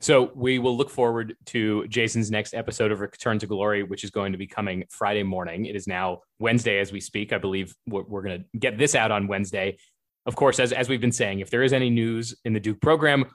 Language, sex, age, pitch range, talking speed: English, male, 30-49, 100-120 Hz, 245 wpm